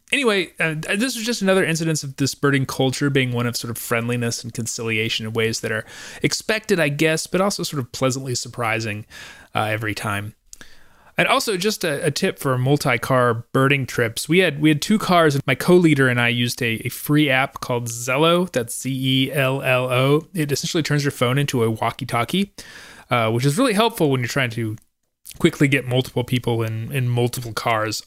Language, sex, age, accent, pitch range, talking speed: English, male, 20-39, American, 120-155 Hz, 200 wpm